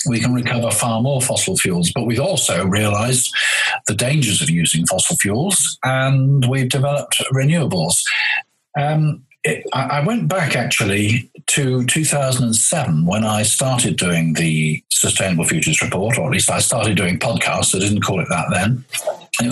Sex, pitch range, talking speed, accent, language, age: male, 110-150 Hz, 155 wpm, British, English, 50-69